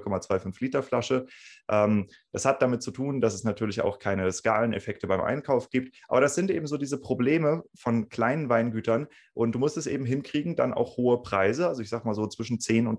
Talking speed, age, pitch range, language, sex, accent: 210 wpm, 30-49, 105-135 Hz, German, male, German